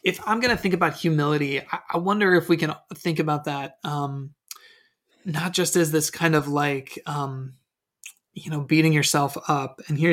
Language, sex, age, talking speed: English, male, 20-39, 180 wpm